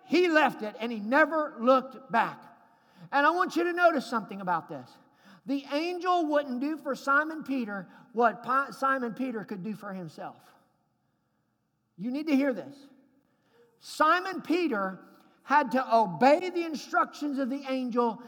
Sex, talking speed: male, 150 wpm